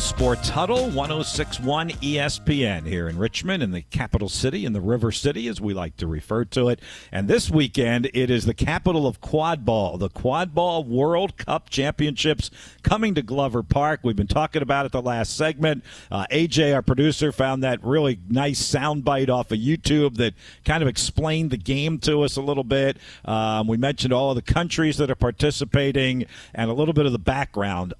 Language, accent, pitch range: English, American, 120-150 Hz